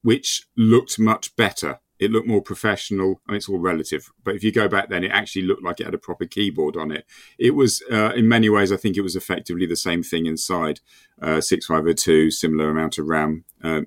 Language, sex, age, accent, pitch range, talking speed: English, male, 40-59, British, 90-130 Hz, 230 wpm